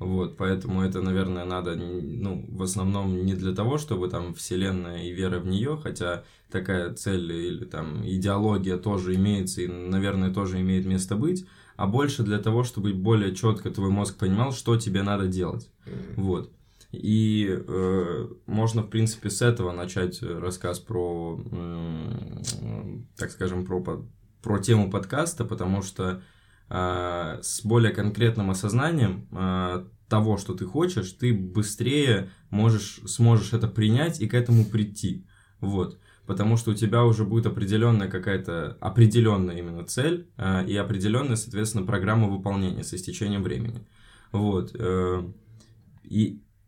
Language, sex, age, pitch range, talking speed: Russian, male, 20-39, 95-115 Hz, 140 wpm